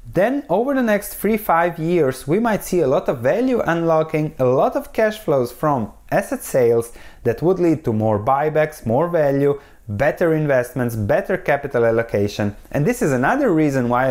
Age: 20-39